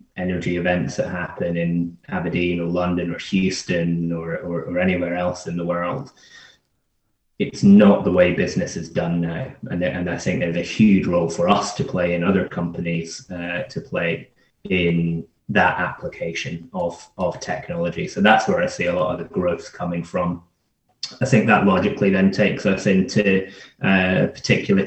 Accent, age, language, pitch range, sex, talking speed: British, 20-39, English, 90-95 Hz, male, 175 wpm